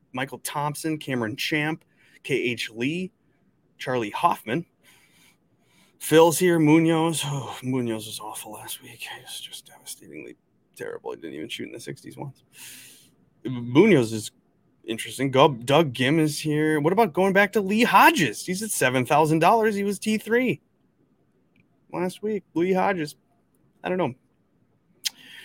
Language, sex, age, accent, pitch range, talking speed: English, male, 20-39, American, 120-165 Hz, 130 wpm